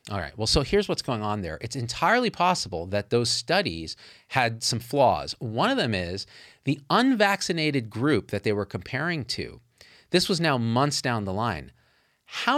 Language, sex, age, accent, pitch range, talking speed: English, male, 40-59, American, 110-150 Hz, 180 wpm